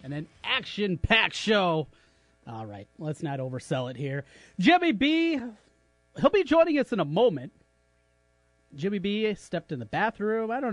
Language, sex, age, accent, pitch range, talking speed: English, male, 30-49, American, 155-205 Hz, 155 wpm